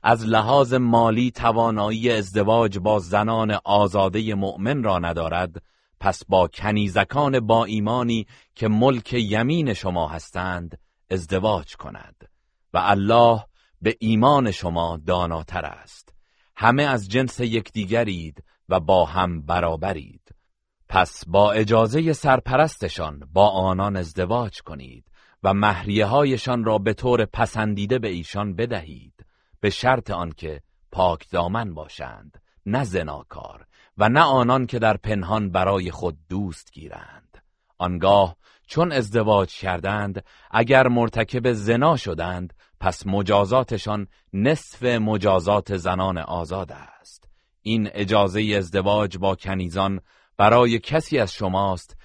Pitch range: 90-115 Hz